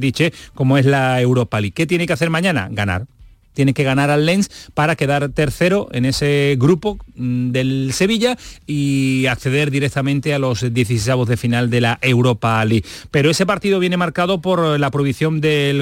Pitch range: 125-150 Hz